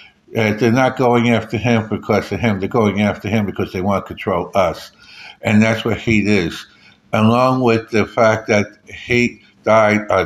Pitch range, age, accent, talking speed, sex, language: 100-115 Hz, 60-79, American, 185 wpm, male, English